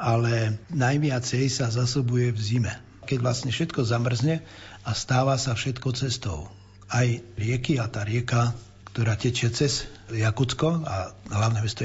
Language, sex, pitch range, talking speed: Slovak, male, 115-130 Hz, 135 wpm